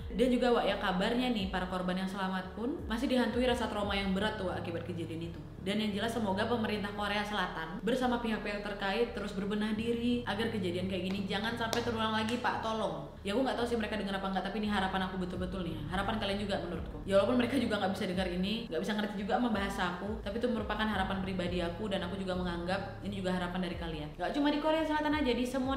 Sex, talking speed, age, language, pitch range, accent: female, 235 wpm, 20-39, Indonesian, 185-230 Hz, native